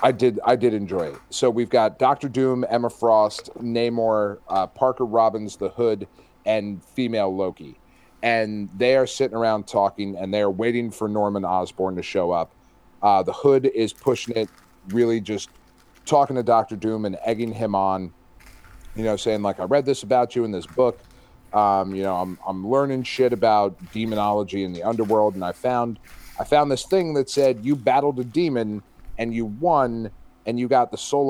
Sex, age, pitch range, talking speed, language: male, 30-49, 105-130 Hz, 190 wpm, English